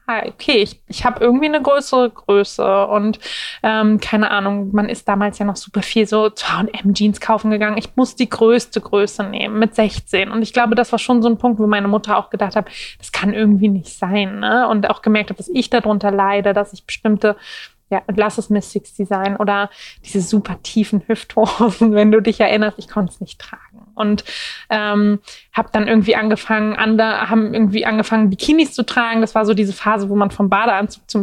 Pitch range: 210-235 Hz